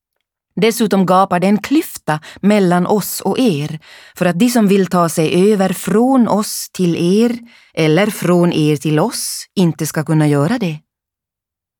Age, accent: 30-49, native